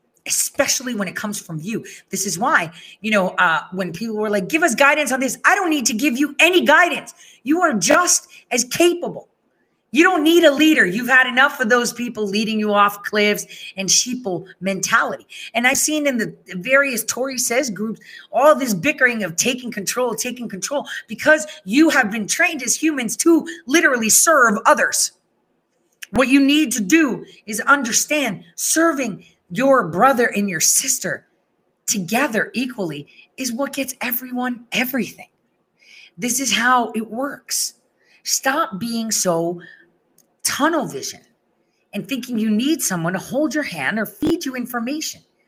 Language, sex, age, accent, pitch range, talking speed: English, female, 30-49, American, 200-280 Hz, 160 wpm